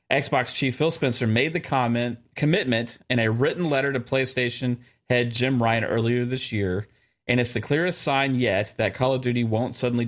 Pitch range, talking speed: 110-135 Hz, 190 wpm